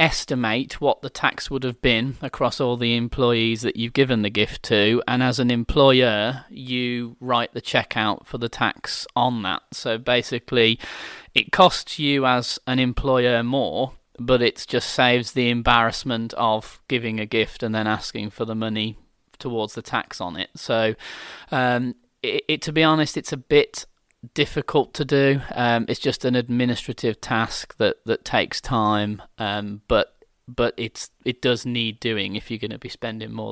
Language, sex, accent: English, male, British